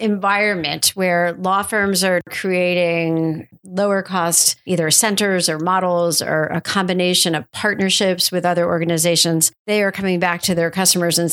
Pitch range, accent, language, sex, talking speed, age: 170-200 Hz, American, English, female, 150 wpm, 40-59